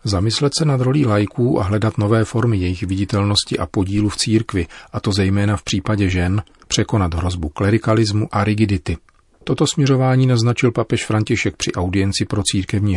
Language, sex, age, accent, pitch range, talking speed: Czech, male, 40-59, native, 95-110 Hz, 160 wpm